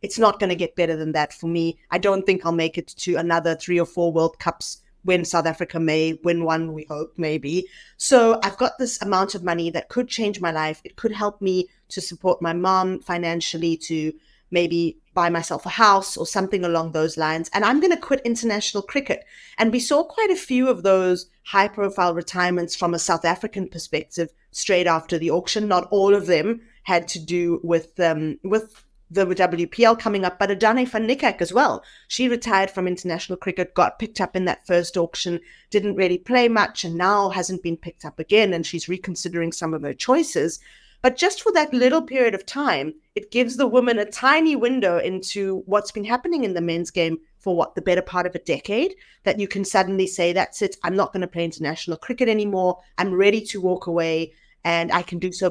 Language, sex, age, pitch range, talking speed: English, female, 30-49, 170-210 Hz, 215 wpm